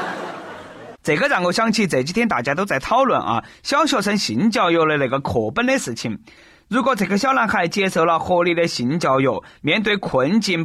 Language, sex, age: Chinese, male, 30-49